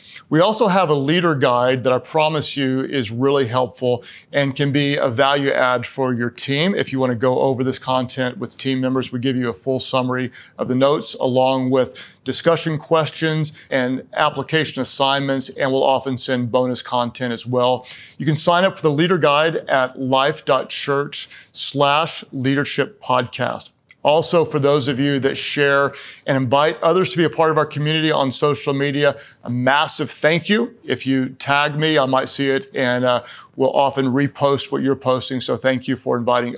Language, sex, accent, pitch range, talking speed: English, male, American, 130-150 Hz, 185 wpm